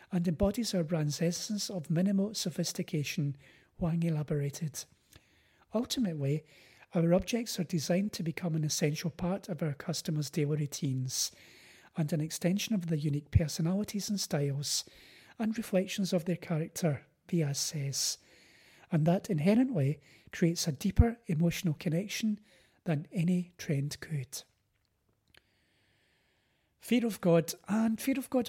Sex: male